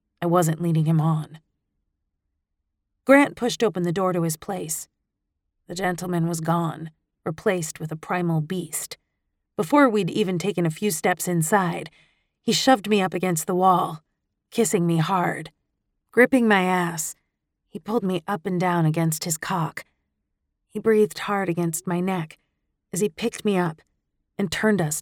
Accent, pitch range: American, 150-185 Hz